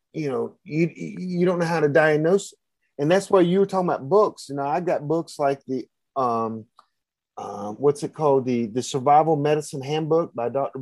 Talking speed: 200 wpm